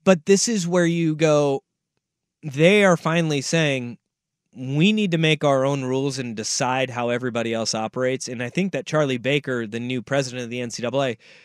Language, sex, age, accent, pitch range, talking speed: English, male, 30-49, American, 135-175 Hz, 185 wpm